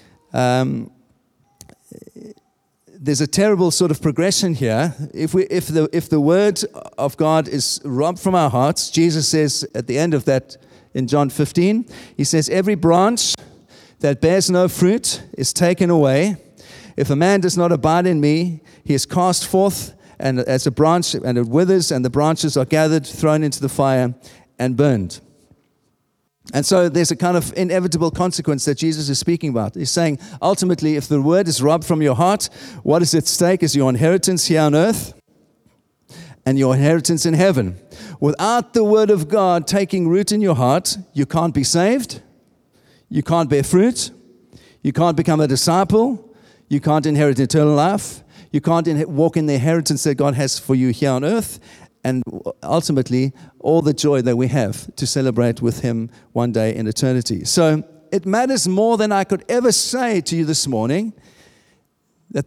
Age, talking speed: 40-59, 175 wpm